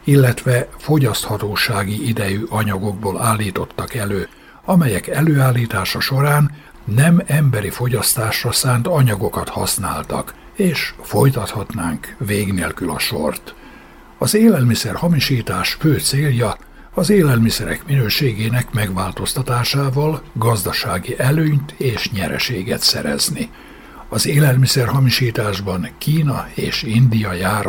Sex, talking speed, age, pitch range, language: male, 90 wpm, 60-79, 105-140 Hz, Hungarian